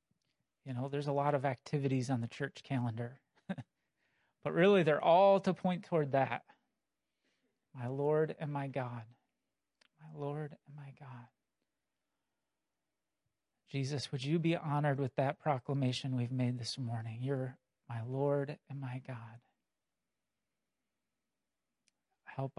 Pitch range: 125-150 Hz